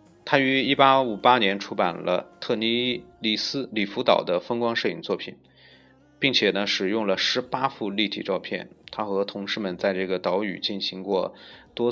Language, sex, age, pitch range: Chinese, male, 30-49, 95-125 Hz